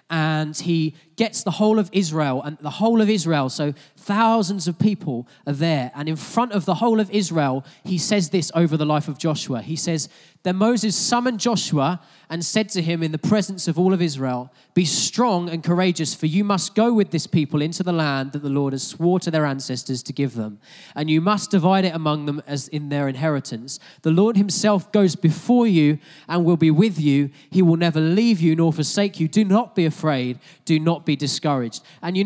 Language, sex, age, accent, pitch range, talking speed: English, male, 20-39, British, 155-200 Hz, 220 wpm